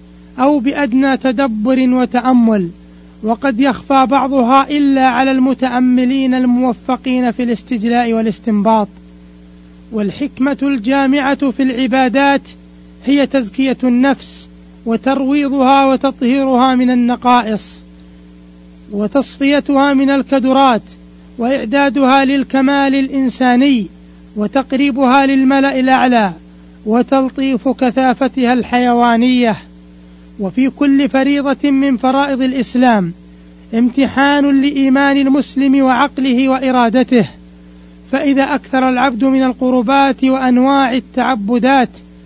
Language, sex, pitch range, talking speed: Arabic, male, 225-270 Hz, 80 wpm